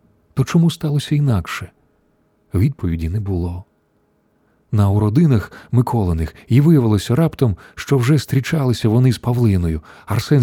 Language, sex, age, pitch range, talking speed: Ukrainian, male, 30-49, 100-140 Hz, 115 wpm